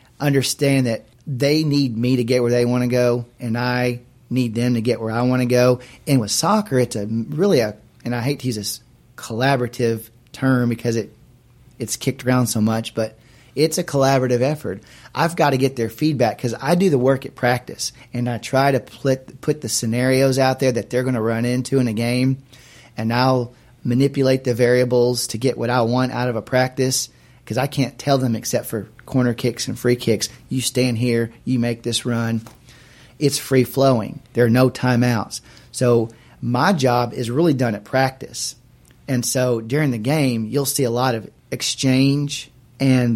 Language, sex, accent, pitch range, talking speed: English, male, American, 120-135 Hz, 195 wpm